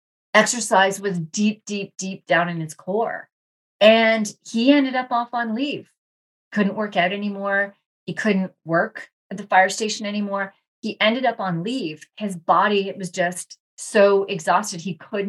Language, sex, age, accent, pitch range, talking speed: English, female, 30-49, American, 175-215 Hz, 160 wpm